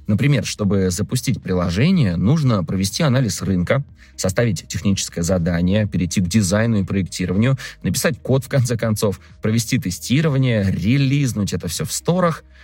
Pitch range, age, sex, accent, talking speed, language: 95-130 Hz, 20-39, male, native, 135 wpm, Russian